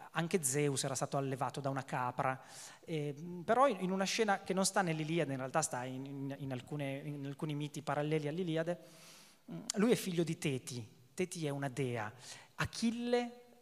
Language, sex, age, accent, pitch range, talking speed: Italian, male, 30-49, native, 135-175 Hz, 165 wpm